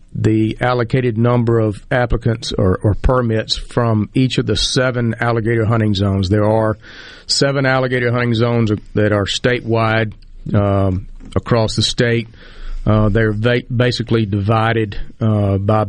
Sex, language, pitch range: male, English, 105-125 Hz